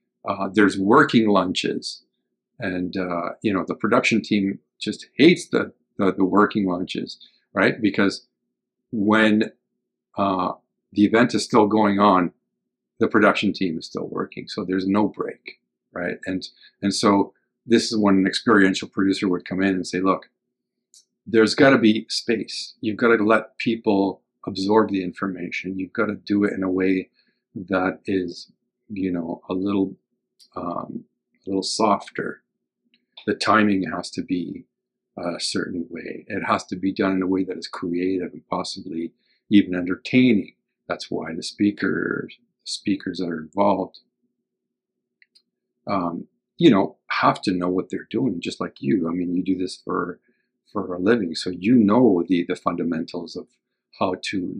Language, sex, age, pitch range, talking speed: English, male, 50-69, 90-105 Hz, 160 wpm